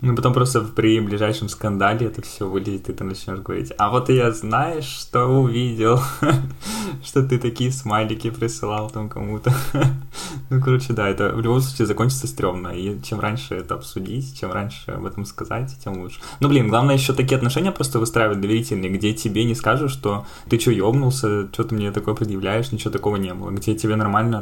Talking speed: 190 wpm